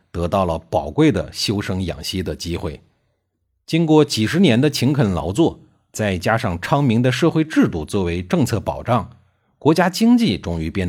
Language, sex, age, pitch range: Chinese, male, 50-69, 90-150 Hz